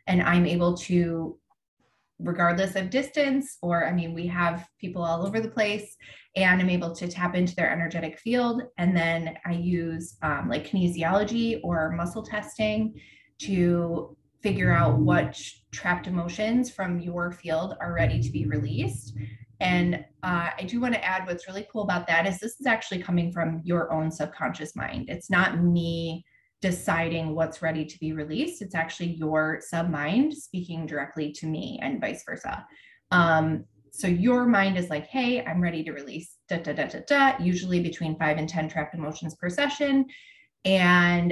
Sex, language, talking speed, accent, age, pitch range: female, English, 170 wpm, American, 20-39, 160-195 Hz